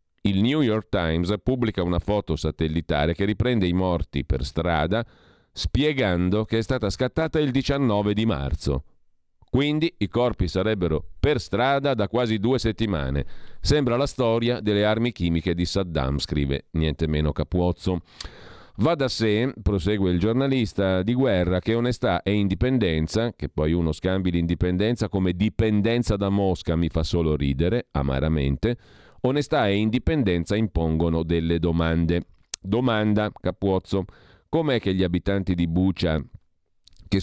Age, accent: 40-59, native